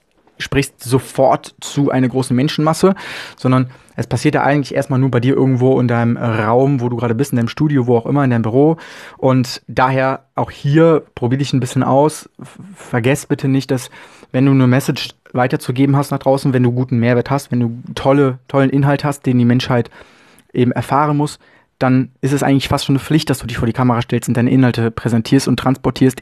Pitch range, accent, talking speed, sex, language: 125-150 Hz, German, 210 wpm, male, German